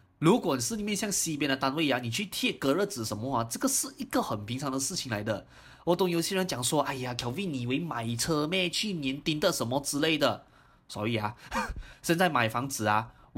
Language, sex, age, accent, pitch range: Chinese, male, 20-39, native, 115-175 Hz